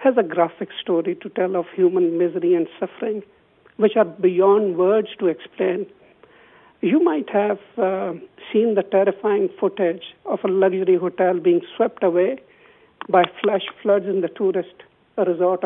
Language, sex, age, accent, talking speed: English, male, 60-79, Indian, 150 wpm